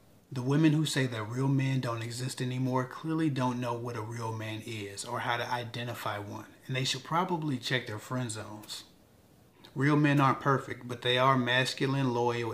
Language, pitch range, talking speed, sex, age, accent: English, 115-135 Hz, 190 wpm, male, 30-49, American